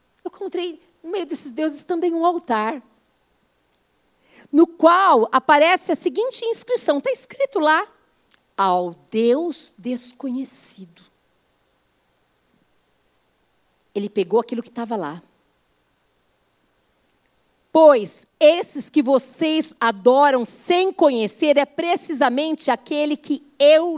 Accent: Brazilian